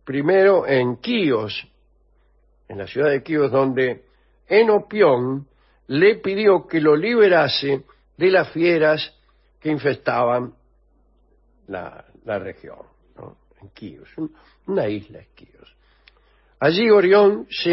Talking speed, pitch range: 110 wpm, 130-195 Hz